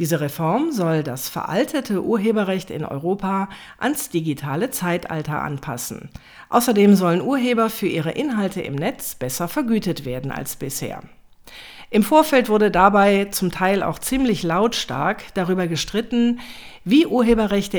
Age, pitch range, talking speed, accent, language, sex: 50-69, 165-225 Hz, 130 wpm, German, German, female